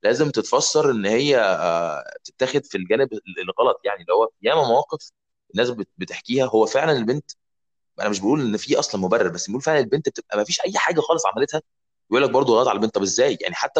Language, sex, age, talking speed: Arabic, male, 20-39, 200 wpm